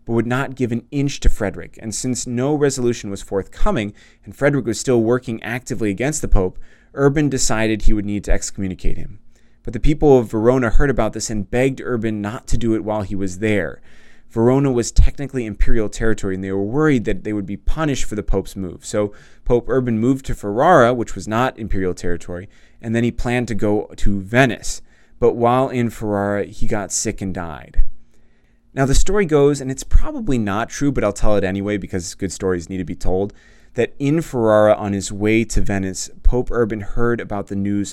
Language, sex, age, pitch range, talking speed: English, male, 20-39, 100-120 Hz, 205 wpm